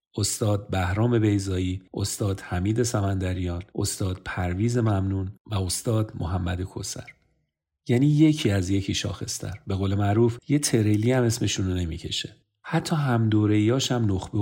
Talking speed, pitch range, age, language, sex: 130 wpm, 95-120 Hz, 40-59, Persian, male